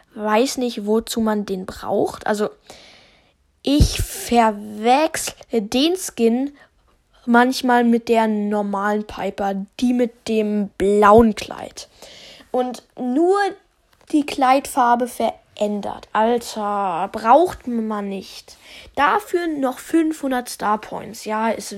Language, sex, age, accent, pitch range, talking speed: German, female, 10-29, German, 210-250 Hz, 100 wpm